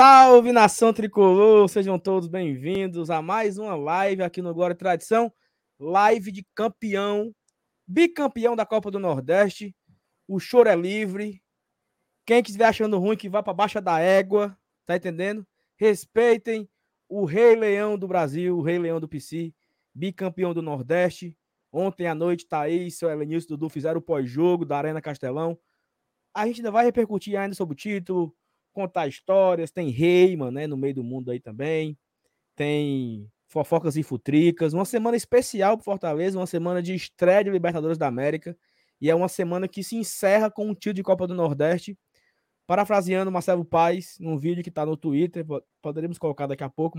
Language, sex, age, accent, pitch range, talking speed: Portuguese, male, 20-39, Brazilian, 165-210 Hz, 170 wpm